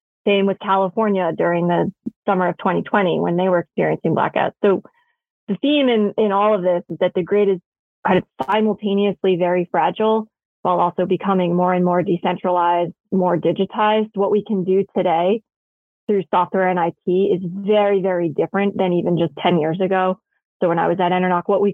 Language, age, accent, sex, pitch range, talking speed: English, 20-39, American, female, 180-210 Hz, 185 wpm